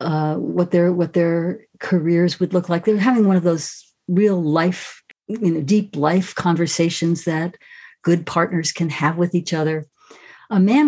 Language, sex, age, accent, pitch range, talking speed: English, female, 50-69, American, 165-195 Hz, 170 wpm